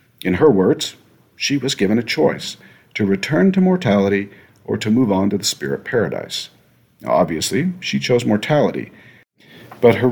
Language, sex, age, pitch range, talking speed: English, male, 50-69, 95-125 Hz, 155 wpm